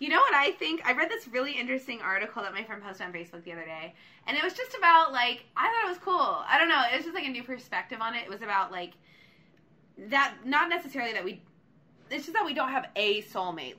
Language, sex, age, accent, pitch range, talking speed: English, female, 20-39, American, 185-260 Hz, 260 wpm